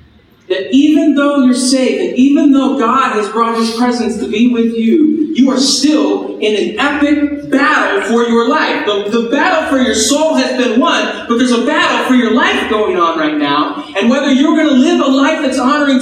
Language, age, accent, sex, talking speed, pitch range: English, 40-59, American, male, 215 wpm, 215-295 Hz